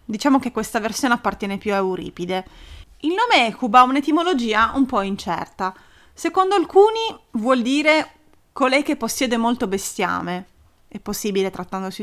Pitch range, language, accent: 200-265 Hz, Italian, native